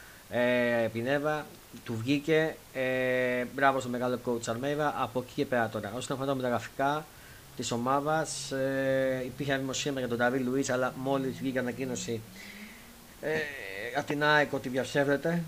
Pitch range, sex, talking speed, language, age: 115-135 Hz, male, 145 wpm, Greek, 30-49